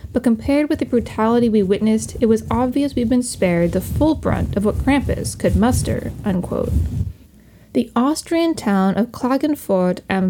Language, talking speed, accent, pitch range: English, 155 wpm, American, 190-265 Hz